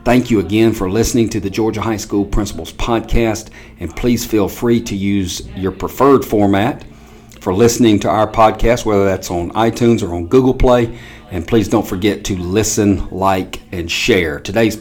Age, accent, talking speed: 40-59, American, 180 wpm